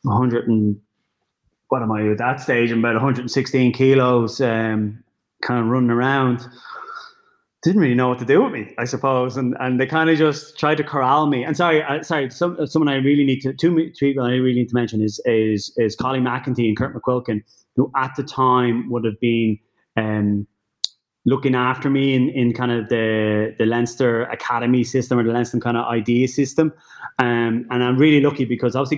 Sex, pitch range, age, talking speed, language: male, 115-135 Hz, 20-39, 200 wpm, English